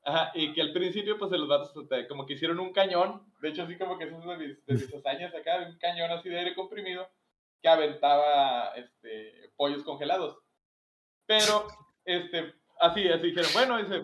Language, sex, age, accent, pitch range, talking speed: Spanish, male, 20-39, Mexican, 145-195 Hz, 190 wpm